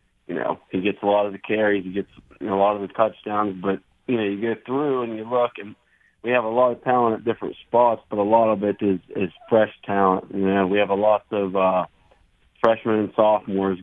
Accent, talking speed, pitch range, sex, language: American, 245 wpm, 100-110 Hz, male, English